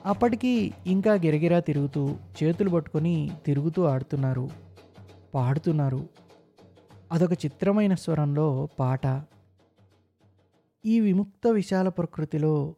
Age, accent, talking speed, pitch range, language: 20-39, native, 80 wpm, 135-170 Hz, Telugu